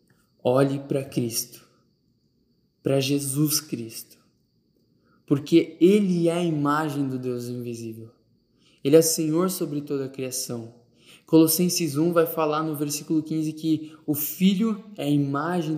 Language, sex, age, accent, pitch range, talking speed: Portuguese, male, 10-29, Brazilian, 135-175 Hz, 130 wpm